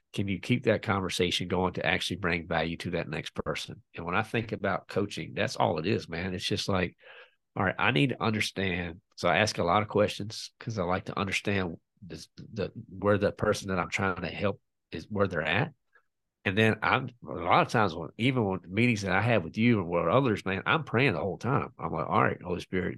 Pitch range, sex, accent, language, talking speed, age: 95-120 Hz, male, American, English, 235 wpm, 40-59